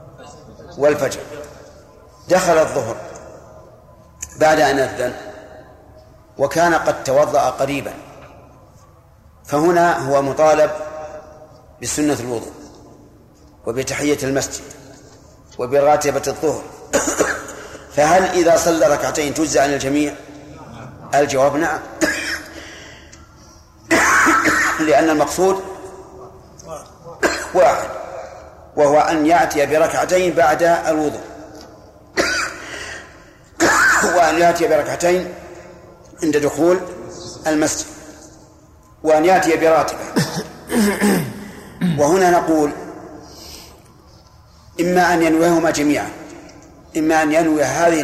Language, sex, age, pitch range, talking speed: Arabic, male, 40-59, 140-170 Hz, 70 wpm